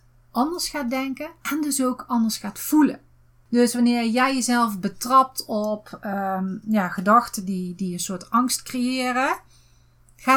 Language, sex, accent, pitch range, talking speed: Dutch, female, Dutch, 180-255 Hz, 135 wpm